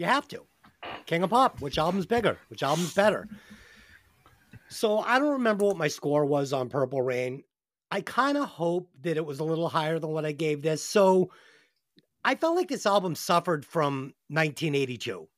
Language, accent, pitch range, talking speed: English, American, 150-210 Hz, 185 wpm